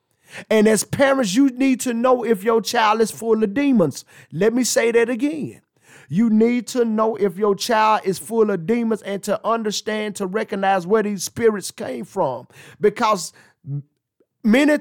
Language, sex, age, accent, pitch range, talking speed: English, male, 30-49, American, 190-230 Hz, 170 wpm